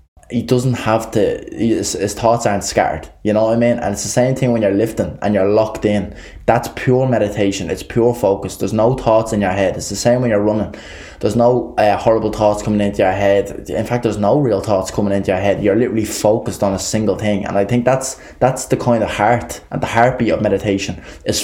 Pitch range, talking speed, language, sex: 95-110 Hz, 240 wpm, English, male